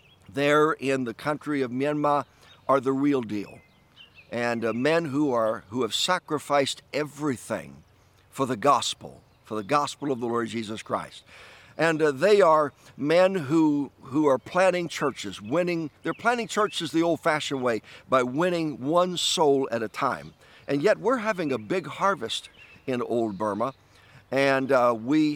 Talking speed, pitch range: 160 wpm, 120-155 Hz